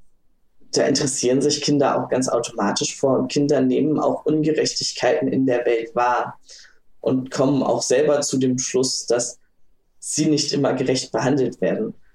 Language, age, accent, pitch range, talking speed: German, 20-39, German, 125-145 Hz, 155 wpm